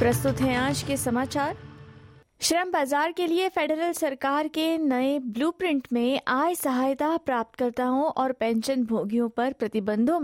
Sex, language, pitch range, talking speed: female, Hindi, 235-310 Hz, 135 wpm